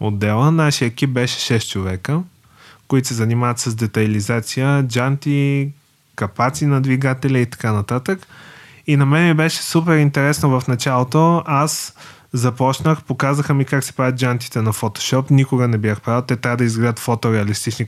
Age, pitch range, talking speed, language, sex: 20-39, 120-145 Hz, 155 wpm, Bulgarian, male